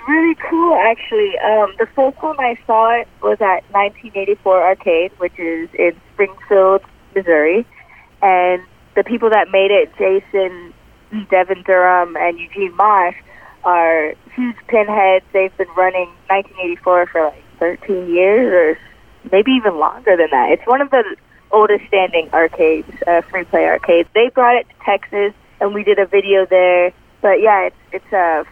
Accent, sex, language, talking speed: American, female, English, 160 wpm